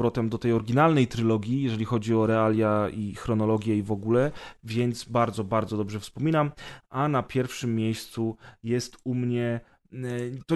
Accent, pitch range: native, 120-135 Hz